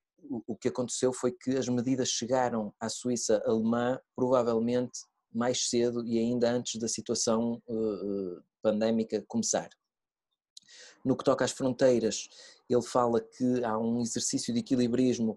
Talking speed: 130 wpm